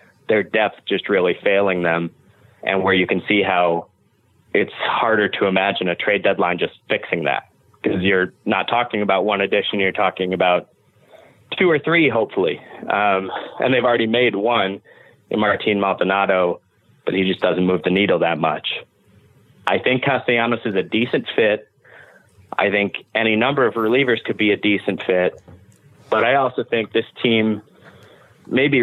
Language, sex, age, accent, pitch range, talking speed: English, male, 30-49, American, 95-110 Hz, 165 wpm